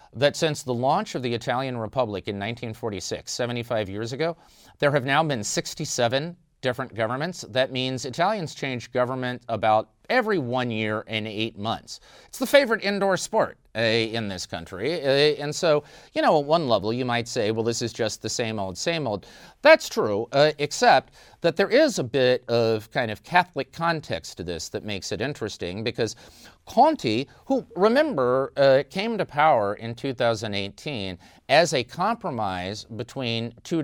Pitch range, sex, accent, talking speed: 115-155 Hz, male, American, 170 wpm